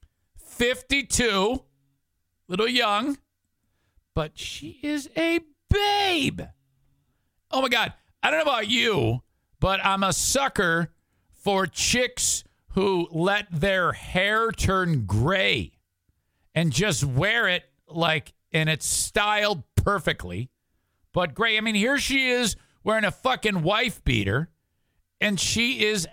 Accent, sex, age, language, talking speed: American, male, 50-69, English, 120 wpm